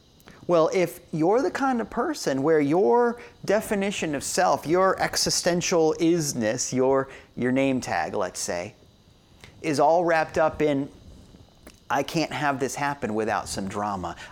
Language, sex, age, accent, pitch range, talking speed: English, male, 30-49, American, 115-160 Hz, 145 wpm